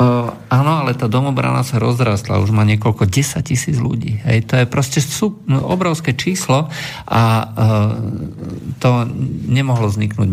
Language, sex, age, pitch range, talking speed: Slovak, male, 50-69, 105-130 Hz, 145 wpm